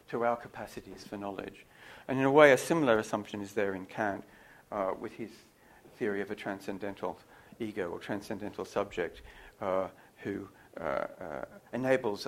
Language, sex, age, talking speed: English, male, 60-79, 155 wpm